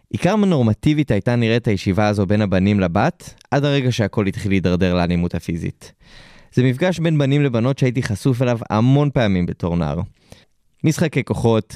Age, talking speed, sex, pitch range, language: 20-39, 155 wpm, male, 100-130 Hz, Hebrew